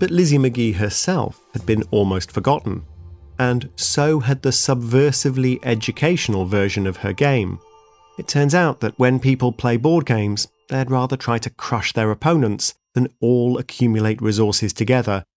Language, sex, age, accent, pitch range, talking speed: English, male, 30-49, British, 105-140 Hz, 150 wpm